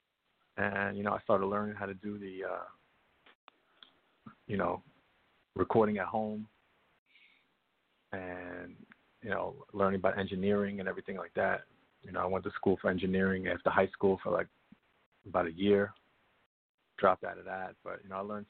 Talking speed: 165 wpm